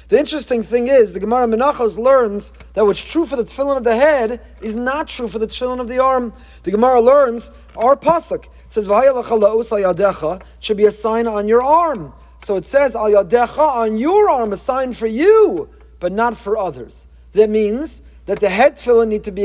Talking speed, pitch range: 205 wpm, 215-275 Hz